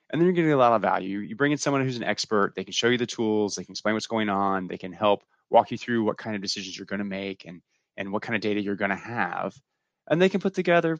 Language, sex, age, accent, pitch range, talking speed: English, male, 20-39, American, 95-125 Hz, 305 wpm